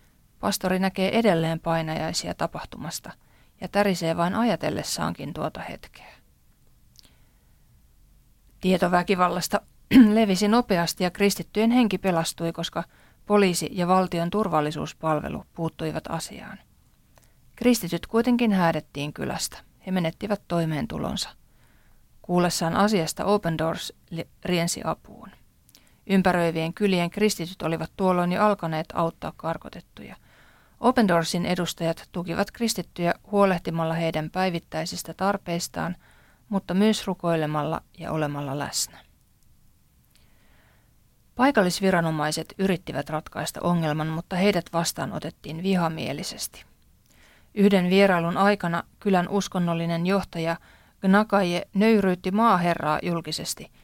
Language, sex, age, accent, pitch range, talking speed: Finnish, female, 30-49, native, 165-200 Hz, 90 wpm